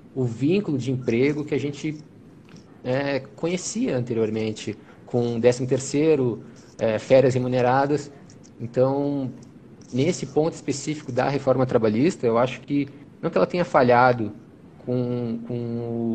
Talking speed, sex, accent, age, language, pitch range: 120 wpm, male, Brazilian, 20-39, Portuguese, 115-140 Hz